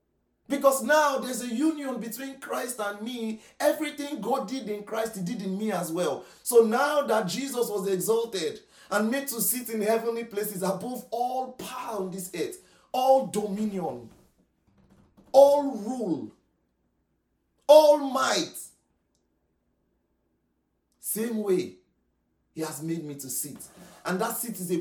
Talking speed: 140 wpm